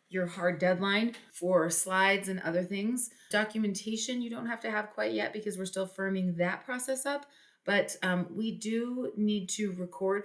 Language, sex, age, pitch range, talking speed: English, female, 30-49, 175-210 Hz, 175 wpm